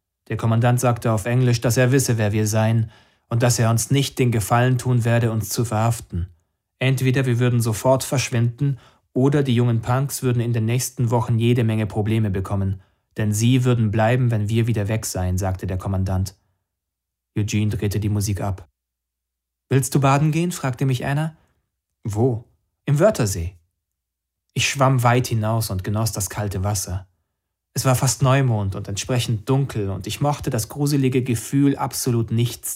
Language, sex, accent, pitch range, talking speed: German, male, German, 100-125 Hz, 170 wpm